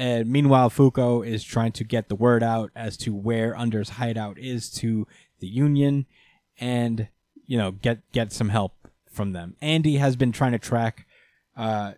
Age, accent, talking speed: 20-39, American, 175 wpm